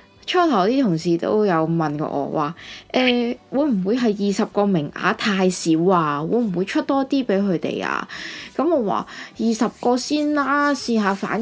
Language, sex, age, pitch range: Chinese, female, 20-39, 170-235 Hz